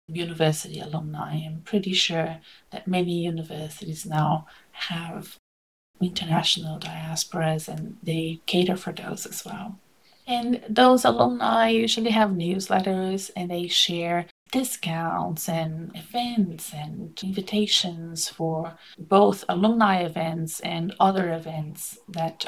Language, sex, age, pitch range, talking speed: English, female, 30-49, 165-205 Hz, 110 wpm